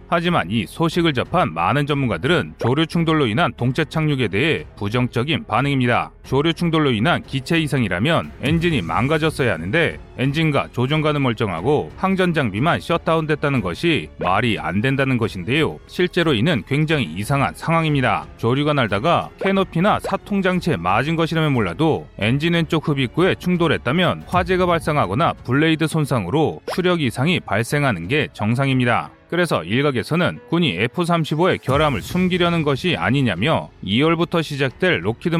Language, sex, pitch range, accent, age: Korean, male, 120-165 Hz, native, 30-49